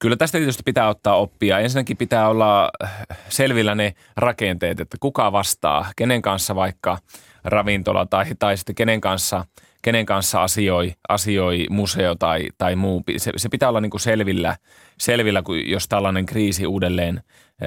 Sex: male